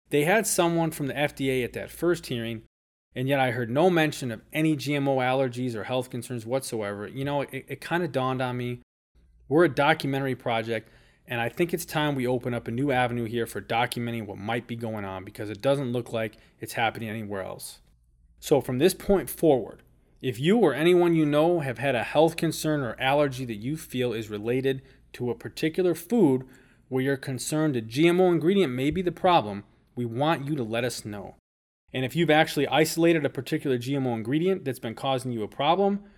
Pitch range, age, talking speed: 115-155 Hz, 20-39, 205 wpm